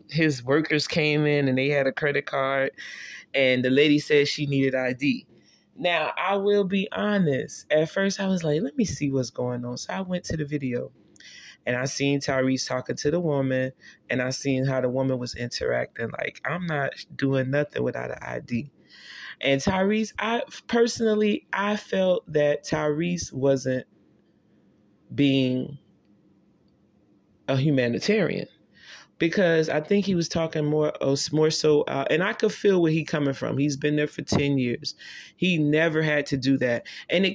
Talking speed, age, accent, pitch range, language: 170 wpm, 20-39, American, 135-175 Hz, English